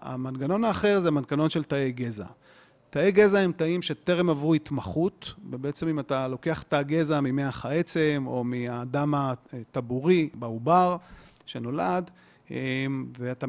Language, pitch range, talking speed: Hebrew, 140-185 Hz, 125 wpm